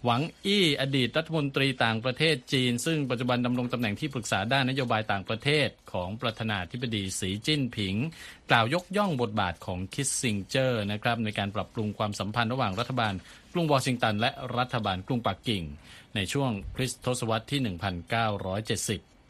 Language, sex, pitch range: Thai, male, 100-130 Hz